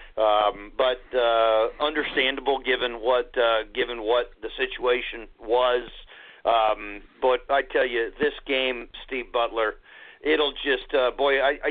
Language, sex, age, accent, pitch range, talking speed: English, male, 40-59, American, 110-145 Hz, 135 wpm